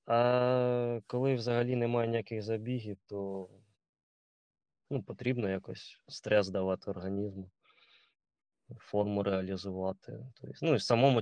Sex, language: male, Russian